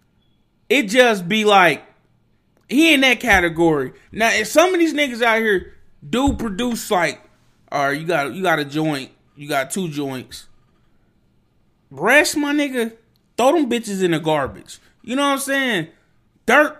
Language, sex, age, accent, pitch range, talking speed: English, male, 20-39, American, 170-245 Hz, 165 wpm